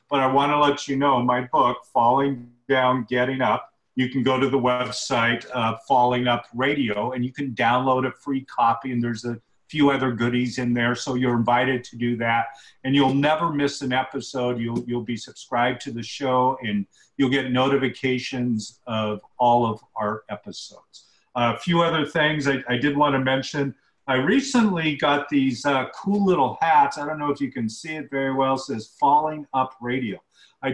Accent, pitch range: American, 125-150 Hz